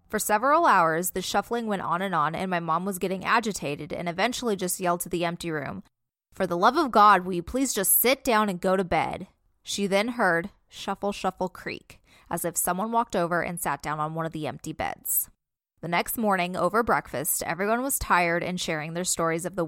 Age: 20-39